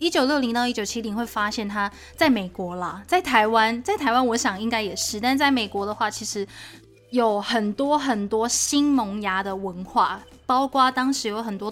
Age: 20-39